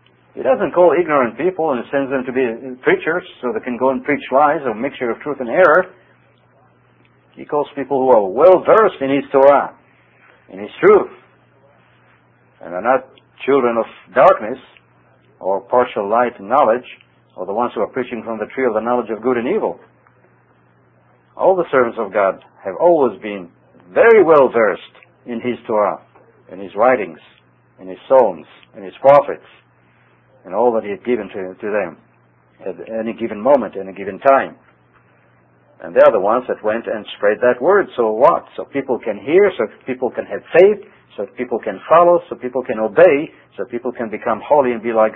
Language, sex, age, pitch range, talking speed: English, male, 60-79, 100-140 Hz, 185 wpm